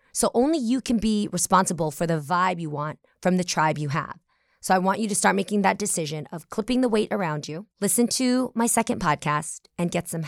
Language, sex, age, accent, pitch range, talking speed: English, female, 20-39, American, 160-210 Hz, 230 wpm